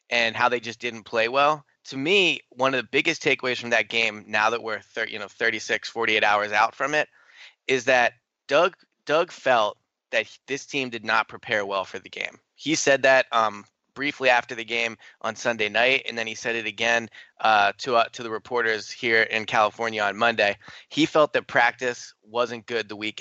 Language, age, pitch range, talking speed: English, 20-39, 110-130 Hz, 205 wpm